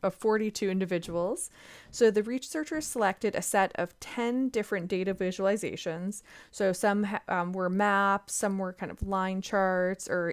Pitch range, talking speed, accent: 185-220 Hz, 150 wpm, American